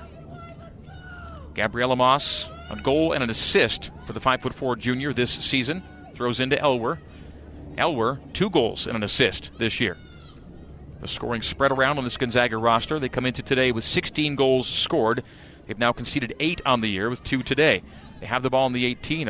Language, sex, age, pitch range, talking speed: English, male, 40-59, 110-135 Hz, 175 wpm